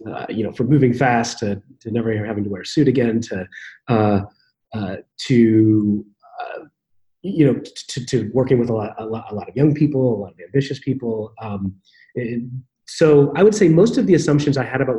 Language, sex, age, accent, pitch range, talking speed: English, male, 30-49, American, 110-140 Hz, 210 wpm